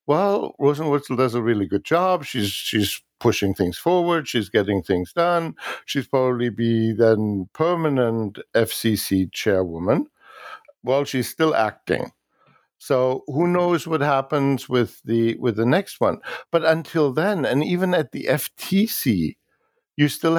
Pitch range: 110-150 Hz